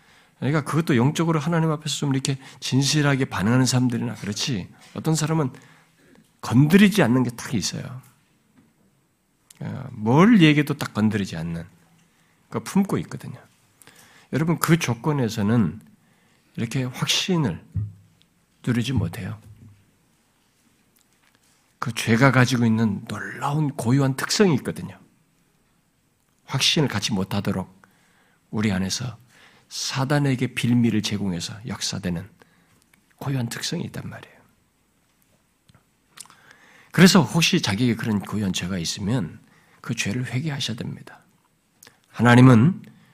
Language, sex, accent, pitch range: Korean, male, native, 115-170 Hz